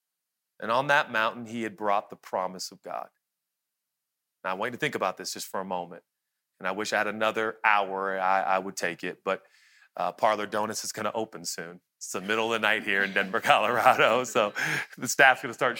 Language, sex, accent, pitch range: English, male, American, 105-135 Hz